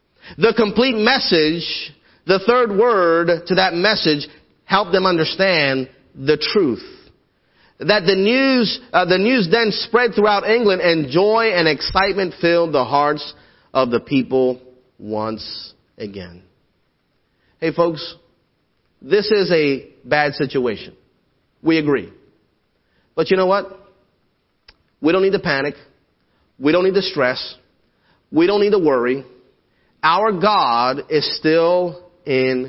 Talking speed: 125 wpm